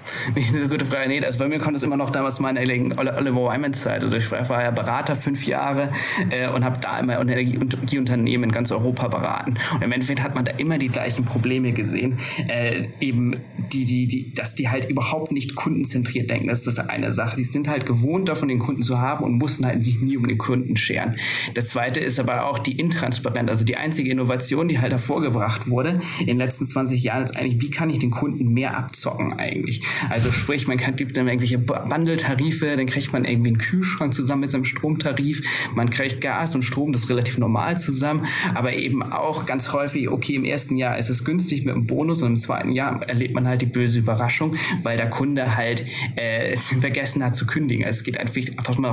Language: German